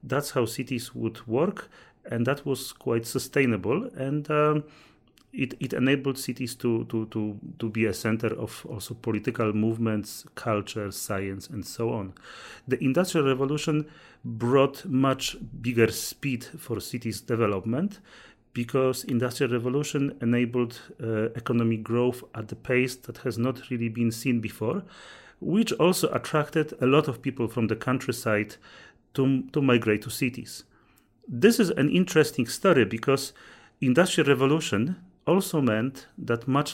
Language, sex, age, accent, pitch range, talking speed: English, male, 40-59, Polish, 115-140 Hz, 140 wpm